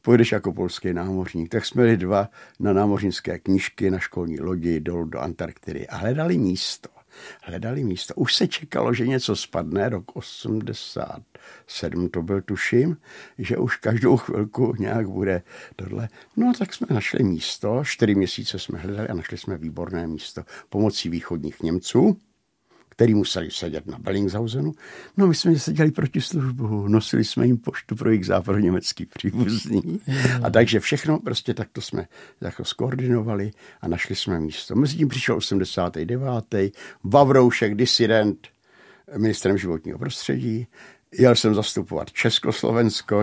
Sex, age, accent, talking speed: male, 60-79, native, 140 wpm